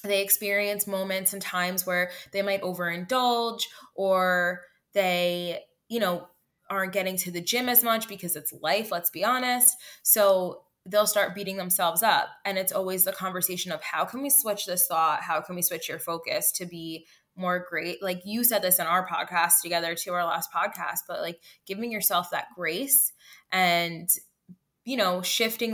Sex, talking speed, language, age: female, 175 wpm, English, 20-39